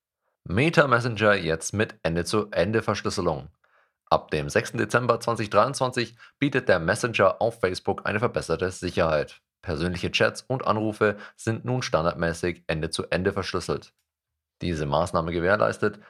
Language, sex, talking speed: German, male, 110 wpm